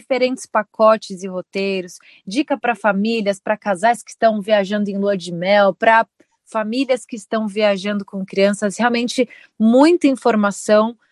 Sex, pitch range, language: female, 205-240 Hz, Portuguese